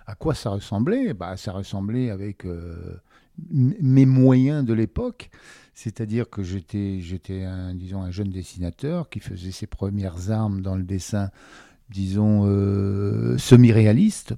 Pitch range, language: 95-120 Hz, French